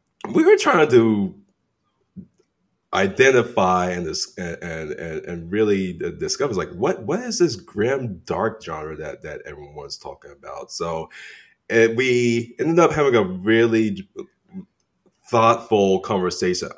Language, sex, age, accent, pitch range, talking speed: English, male, 30-49, American, 90-125 Hz, 130 wpm